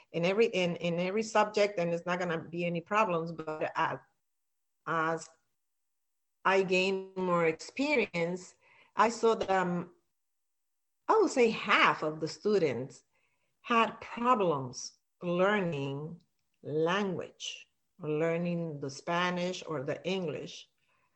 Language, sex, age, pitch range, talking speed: English, female, 40-59, 160-190 Hz, 110 wpm